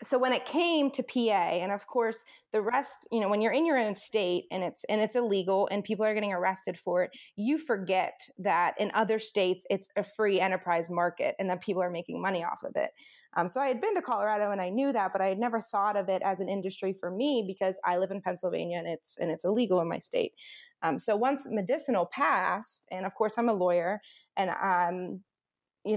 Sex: female